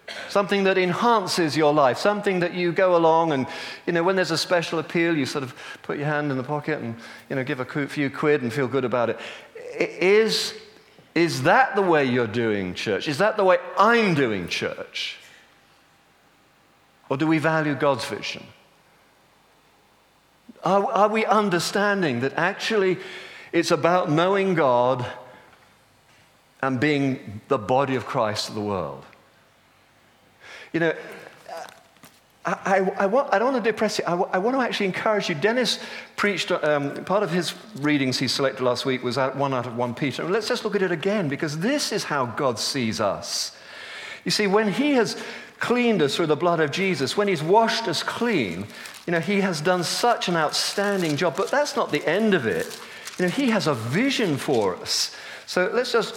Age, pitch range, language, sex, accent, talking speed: 50-69, 140-205 Hz, English, male, British, 180 wpm